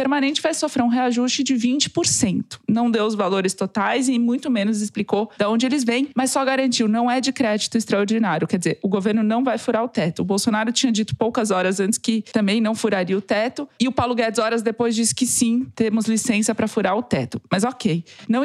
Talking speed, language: 220 wpm, Portuguese